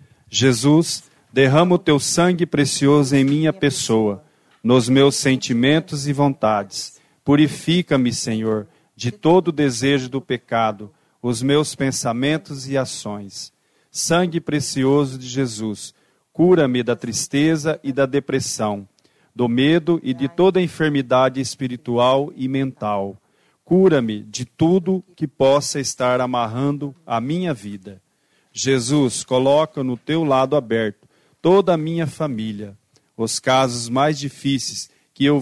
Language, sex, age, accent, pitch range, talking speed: Portuguese, male, 40-59, Brazilian, 120-150 Hz, 125 wpm